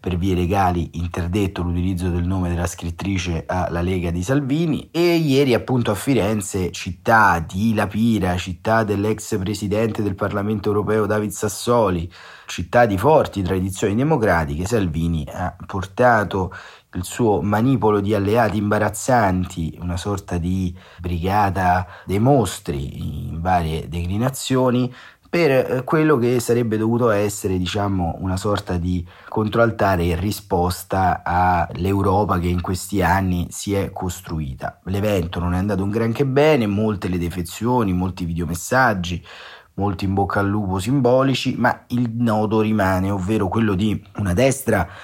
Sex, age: male, 30-49